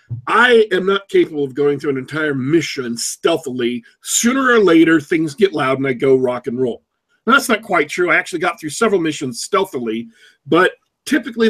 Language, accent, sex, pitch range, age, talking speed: English, American, male, 140-195 Hz, 40-59, 195 wpm